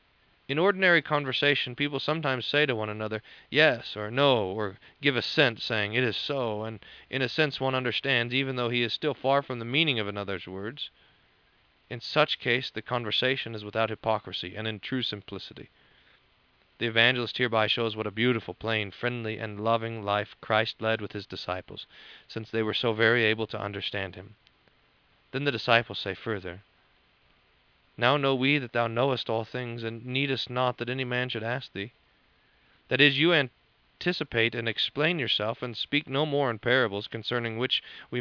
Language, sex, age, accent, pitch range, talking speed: English, male, 40-59, American, 110-135 Hz, 175 wpm